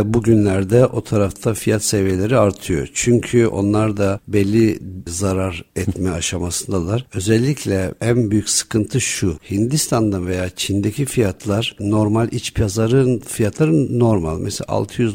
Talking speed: 115 wpm